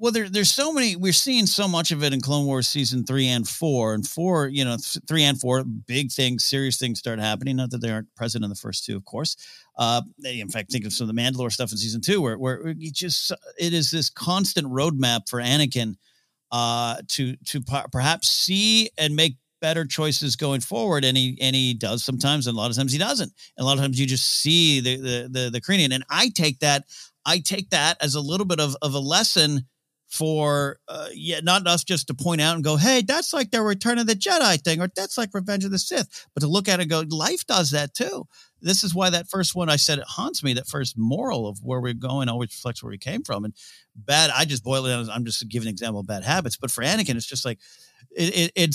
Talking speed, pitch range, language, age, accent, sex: 255 wpm, 125-170 Hz, English, 50-69, American, male